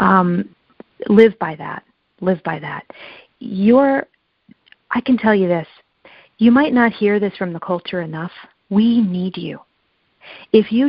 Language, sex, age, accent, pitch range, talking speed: English, female, 40-59, American, 175-210 Hz, 145 wpm